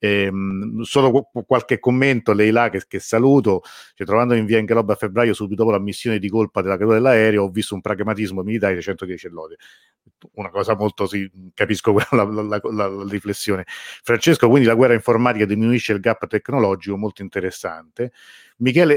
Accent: native